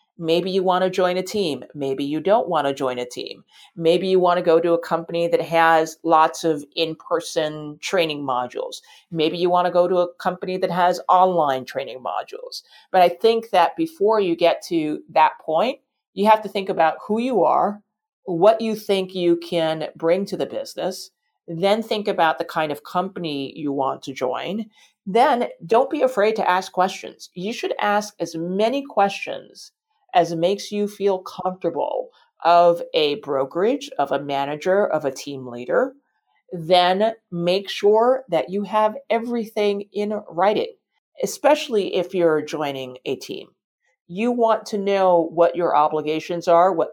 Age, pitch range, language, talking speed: 50-69, 165-215 Hz, English, 175 wpm